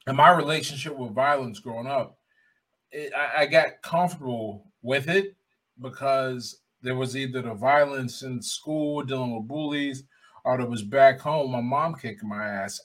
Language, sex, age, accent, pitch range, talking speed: English, male, 20-39, American, 125-155 Hz, 165 wpm